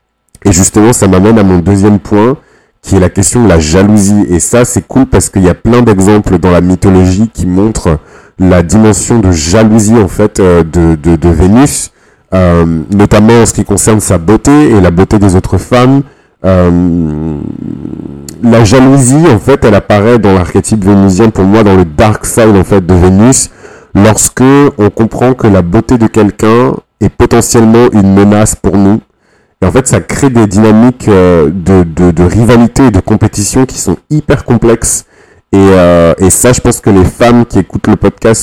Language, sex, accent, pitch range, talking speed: French, male, French, 95-115 Hz, 185 wpm